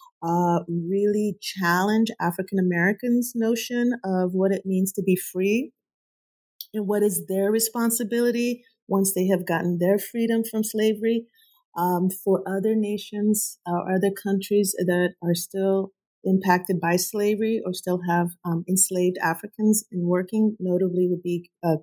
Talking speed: 135 wpm